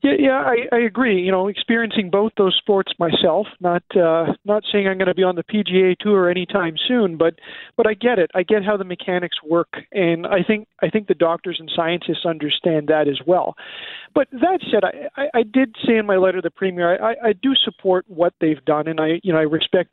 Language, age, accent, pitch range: English, 40-59, American, 165-210 Hz